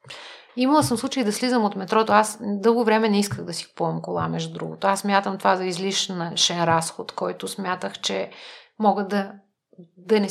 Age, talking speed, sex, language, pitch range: 30-49, 185 wpm, female, Bulgarian, 195-235 Hz